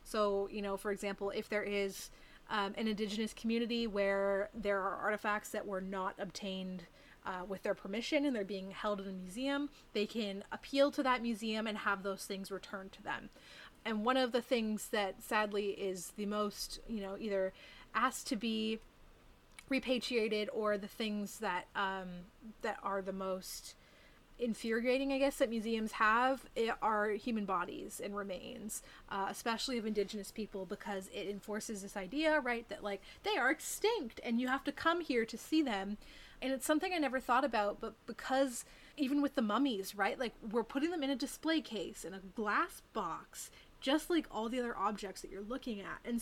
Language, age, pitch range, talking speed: English, 30-49, 200-250 Hz, 185 wpm